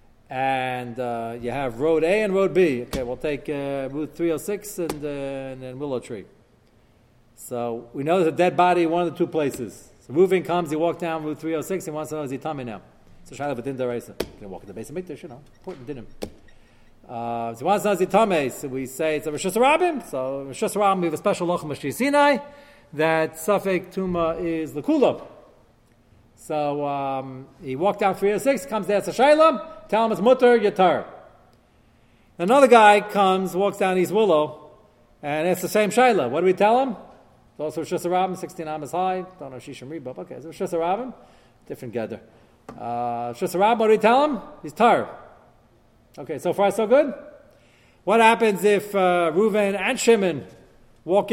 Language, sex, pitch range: English, male, 135-205 Hz